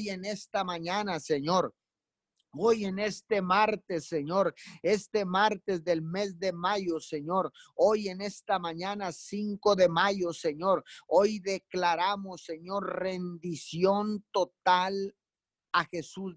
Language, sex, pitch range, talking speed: Spanish, male, 170-200 Hz, 115 wpm